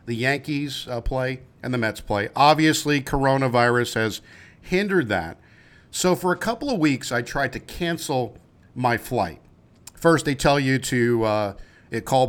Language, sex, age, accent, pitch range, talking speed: English, male, 50-69, American, 115-160 Hz, 155 wpm